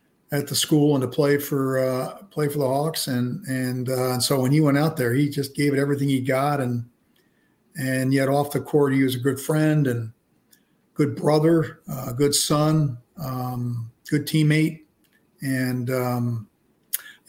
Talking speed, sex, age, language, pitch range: 180 wpm, male, 50-69, English, 130-150 Hz